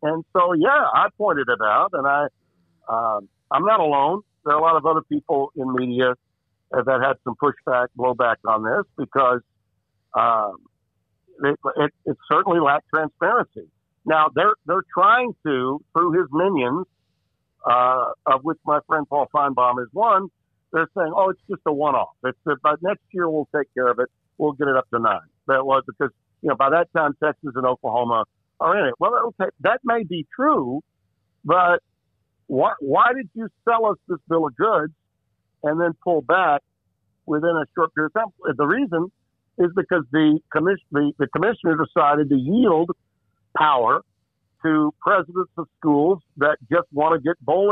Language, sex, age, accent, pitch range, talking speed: English, male, 60-79, American, 130-170 Hz, 170 wpm